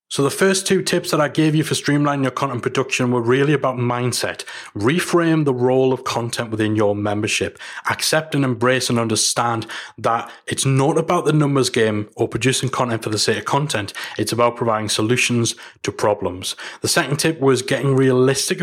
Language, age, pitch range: English, 30-49, 120-150 Hz